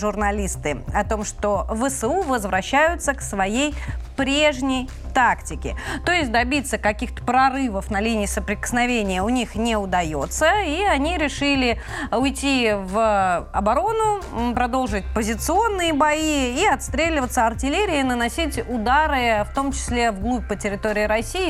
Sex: female